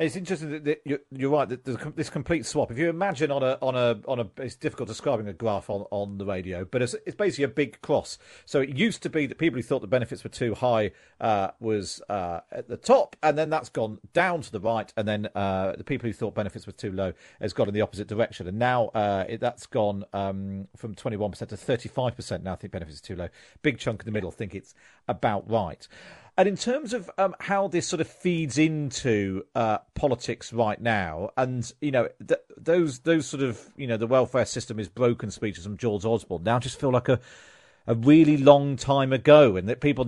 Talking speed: 230 wpm